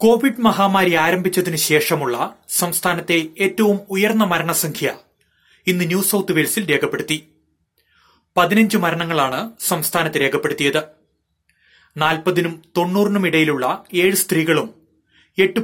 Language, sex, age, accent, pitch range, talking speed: Malayalam, male, 30-49, native, 160-195 Hz, 60 wpm